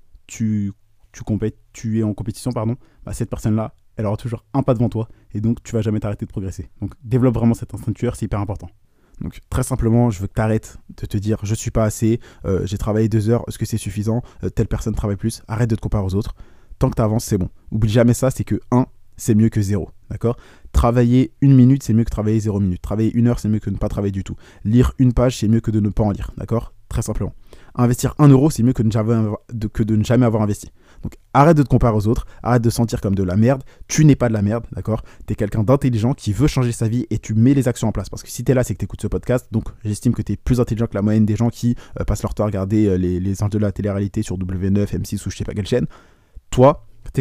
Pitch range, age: 105-120 Hz, 20-39